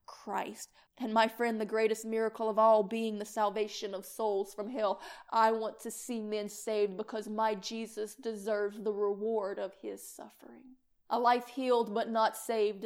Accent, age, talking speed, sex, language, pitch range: American, 30-49, 175 wpm, female, English, 210-245 Hz